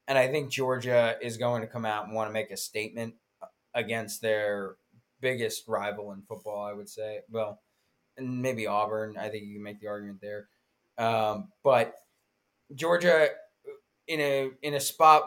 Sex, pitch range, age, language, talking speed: male, 105-120 Hz, 20-39, English, 175 wpm